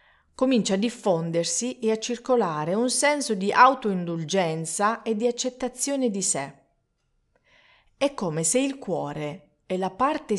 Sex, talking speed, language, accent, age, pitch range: female, 135 wpm, Italian, native, 40-59, 170-235 Hz